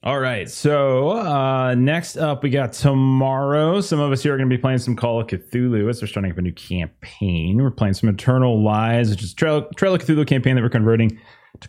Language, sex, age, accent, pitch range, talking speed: English, male, 30-49, American, 105-145 Hz, 235 wpm